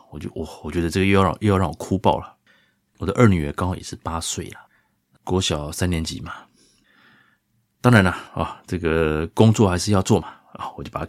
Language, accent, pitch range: Chinese, native, 80-100 Hz